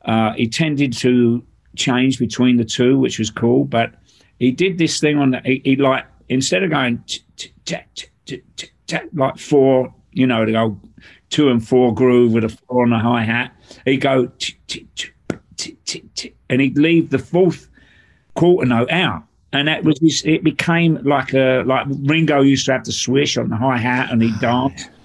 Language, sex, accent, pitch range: English, male, British, 115-145 Hz